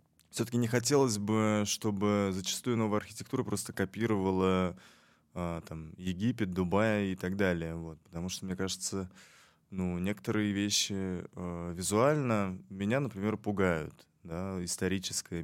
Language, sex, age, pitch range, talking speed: Russian, male, 20-39, 85-110 Hz, 115 wpm